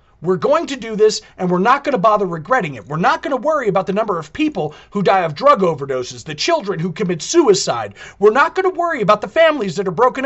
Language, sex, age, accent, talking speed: English, male, 40-59, American, 255 wpm